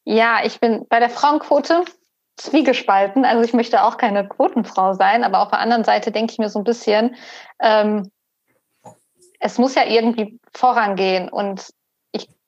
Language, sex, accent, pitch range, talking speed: German, female, German, 215-245 Hz, 160 wpm